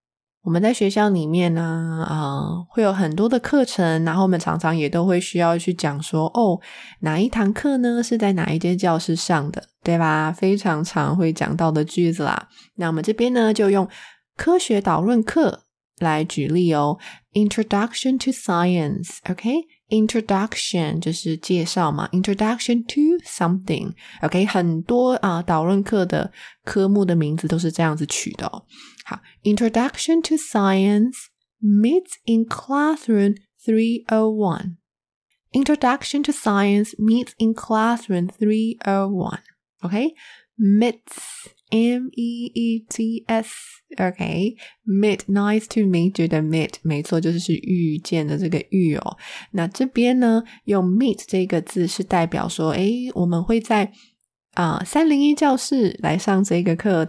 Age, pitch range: 20-39, 170-235 Hz